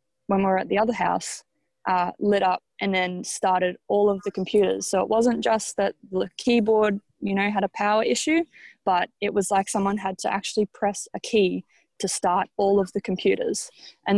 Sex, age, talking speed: female, 20-39, 205 wpm